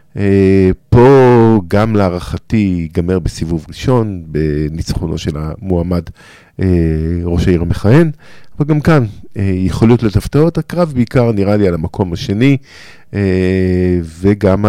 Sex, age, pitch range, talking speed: male, 50-69, 90-110 Hz, 100 wpm